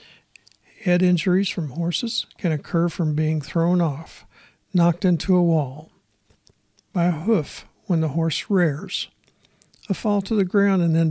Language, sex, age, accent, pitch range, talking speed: English, male, 60-79, American, 150-175 Hz, 150 wpm